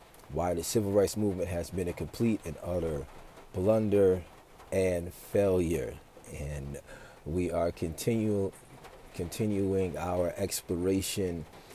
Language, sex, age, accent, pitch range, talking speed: English, male, 40-59, American, 85-105 Hz, 100 wpm